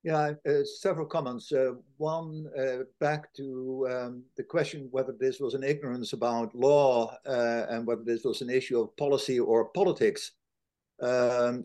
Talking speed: 160 wpm